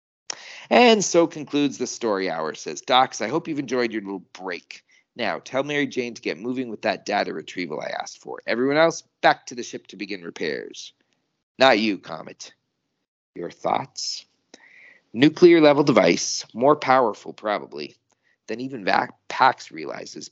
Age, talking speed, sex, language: 40-59, 155 wpm, male, English